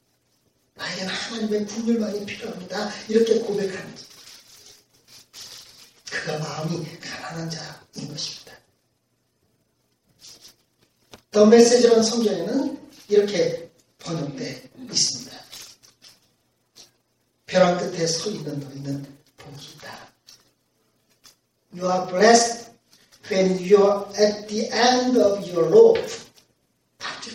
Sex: male